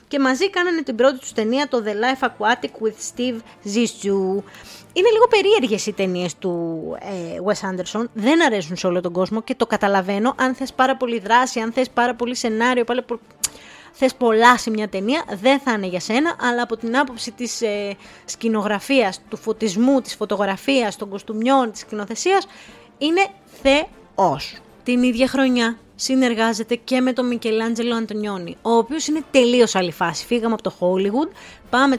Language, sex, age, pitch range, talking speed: Greek, female, 20-39, 215-265 Hz, 170 wpm